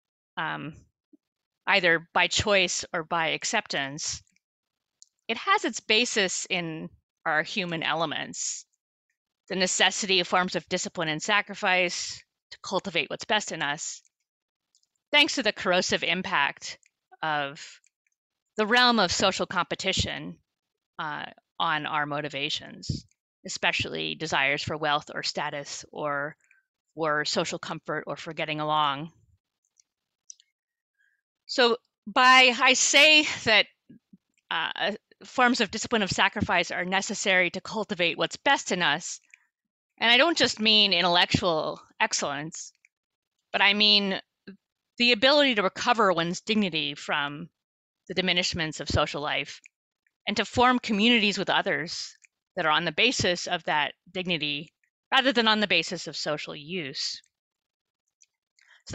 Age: 30-49